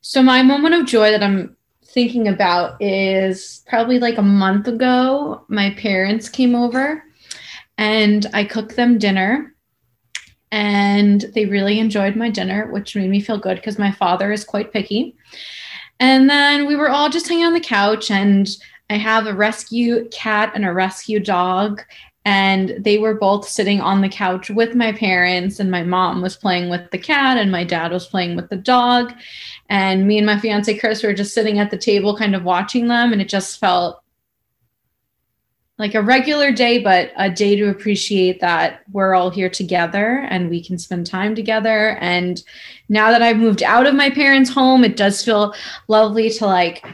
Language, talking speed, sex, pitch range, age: English, 185 wpm, female, 195-230 Hz, 20-39